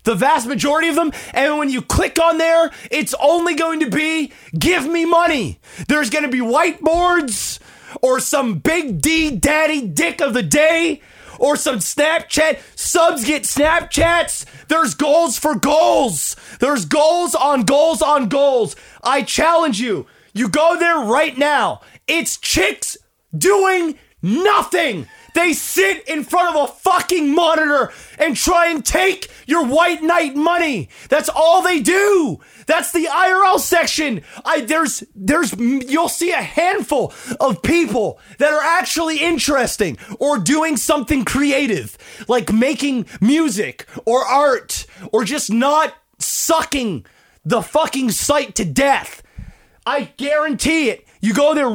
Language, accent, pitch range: English, American, 275-330 Hz